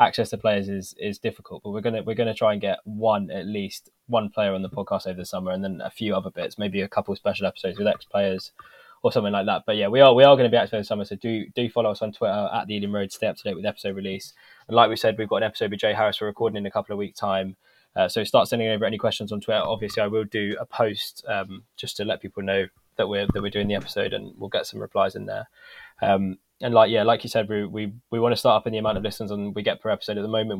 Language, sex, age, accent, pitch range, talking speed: English, male, 10-29, British, 100-110 Hz, 305 wpm